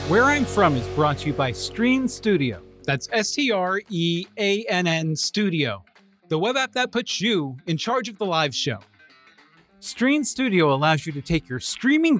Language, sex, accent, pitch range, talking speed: English, male, American, 160-230 Hz, 160 wpm